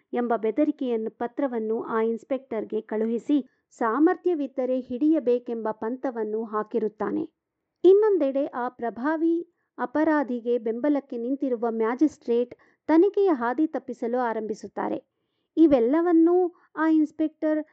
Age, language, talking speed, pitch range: 50-69, Kannada, 80 wpm, 235-315 Hz